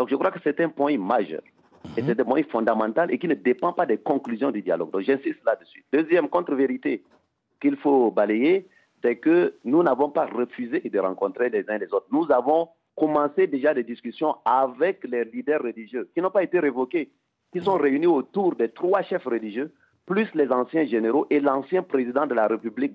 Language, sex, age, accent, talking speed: French, male, 50-69, French, 195 wpm